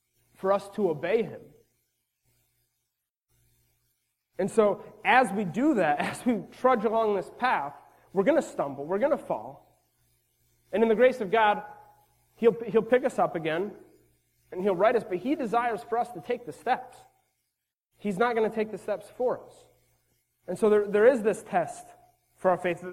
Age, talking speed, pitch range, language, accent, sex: 30-49, 180 wpm, 150-215 Hz, English, American, male